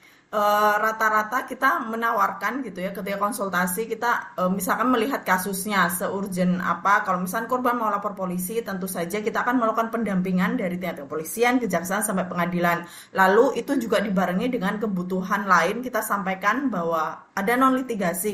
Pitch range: 185-225 Hz